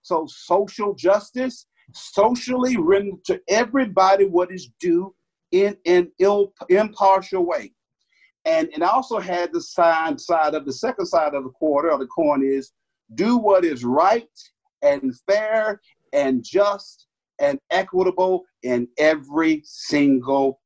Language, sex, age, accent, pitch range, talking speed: English, male, 50-69, American, 170-220 Hz, 135 wpm